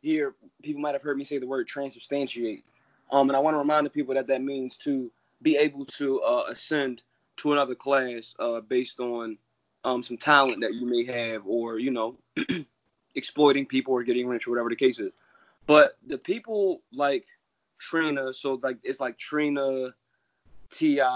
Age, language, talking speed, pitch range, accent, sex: 20-39, English, 180 wpm, 120-145 Hz, American, male